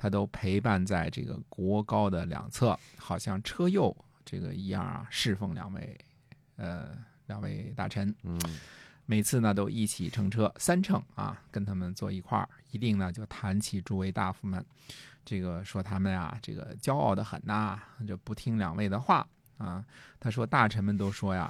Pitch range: 95-115 Hz